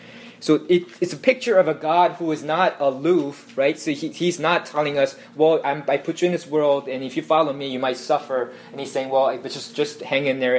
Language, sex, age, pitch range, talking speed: English, male, 20-39, 120-195 Hz, 250 wpm